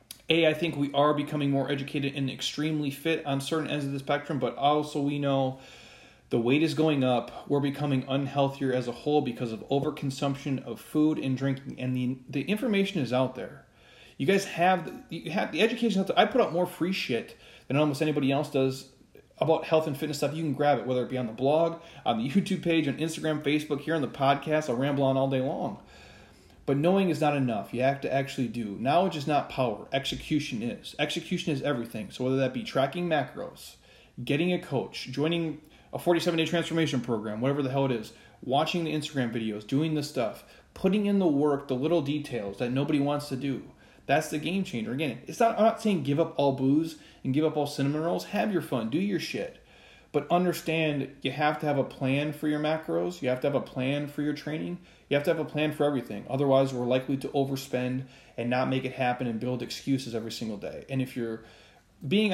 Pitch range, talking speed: 130-160 Hz, 220 wpm